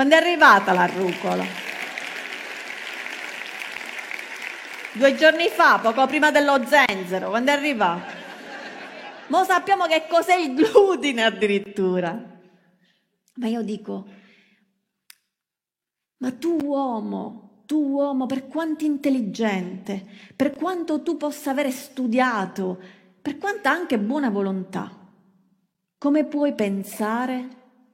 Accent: native